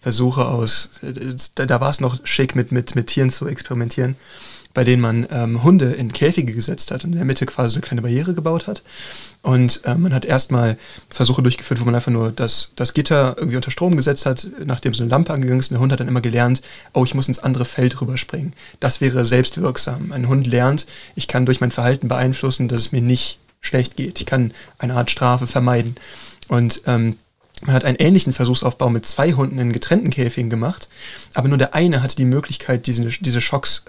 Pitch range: 125-140 Hz